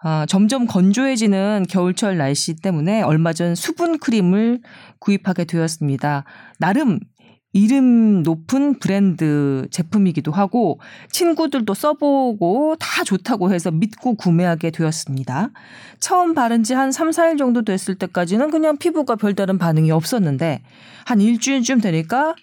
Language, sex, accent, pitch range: Korean, female, native, 170-270 Hz